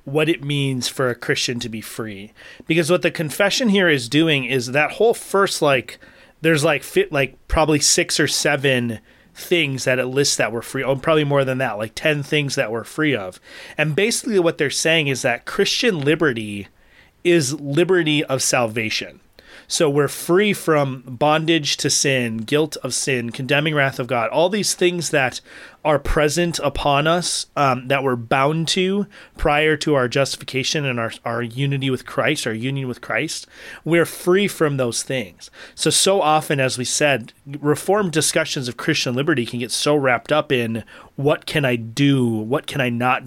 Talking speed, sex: 185 wpm, male